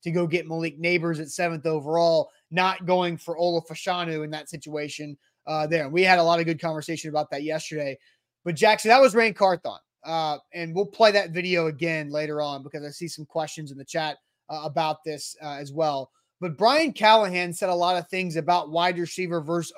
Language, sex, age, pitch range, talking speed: English, male, 20-39, 160-190 Hz, 205 wpm